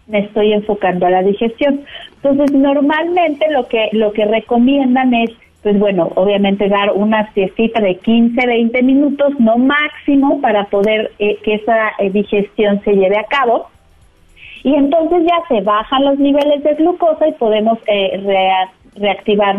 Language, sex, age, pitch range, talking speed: Spanish, female, 40-59, 210-275 Hz, 155 wpm